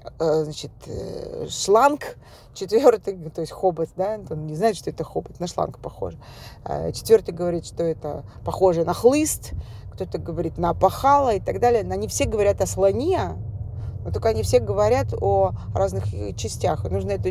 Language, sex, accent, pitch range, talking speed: Russian, female, native, 95-110 Hz, 155 wpm